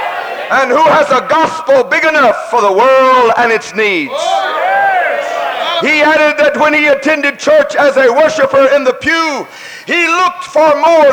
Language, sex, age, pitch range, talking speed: English, male, 50-69, 225-305 Hz, 160 wpm